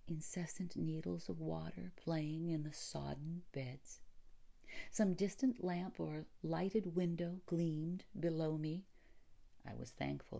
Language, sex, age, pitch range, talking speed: English, female, 50-69, 130-185 Hz, 120 wpm